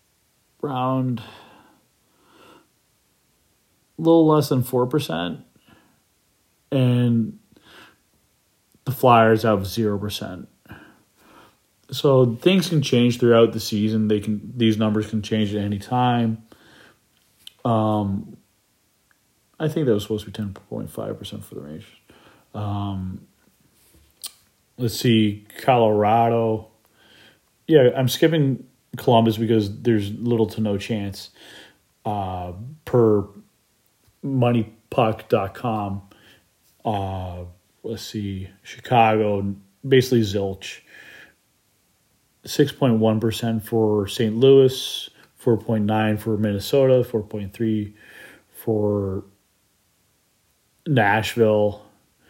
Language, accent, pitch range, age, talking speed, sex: English, American, 105-120 Hz, 30-49, 95 wpm, male